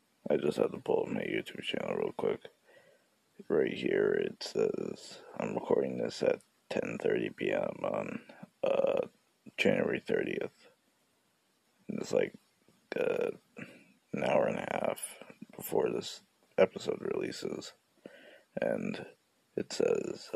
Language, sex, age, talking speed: English, male, 30-49, 120 wpm